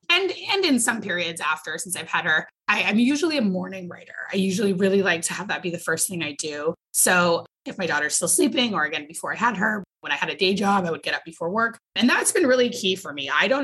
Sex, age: female, 20-39